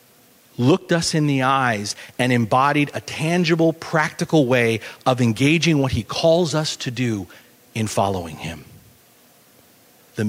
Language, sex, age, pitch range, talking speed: English, male, 40-59, 120-160 Hz, 135 wpm